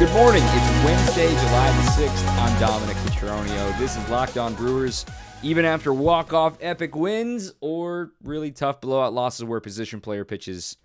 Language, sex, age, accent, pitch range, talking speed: English, male, 20-39, American, 105-150 Hz, 160 wpm